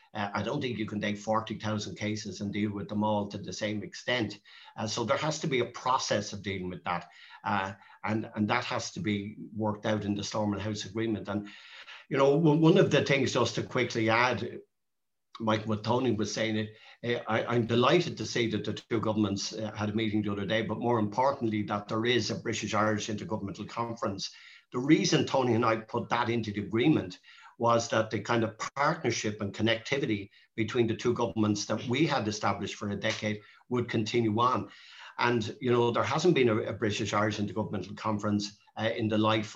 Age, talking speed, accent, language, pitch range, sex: 50-69, 205 wpm, Irish, English, 105-115 Hz, male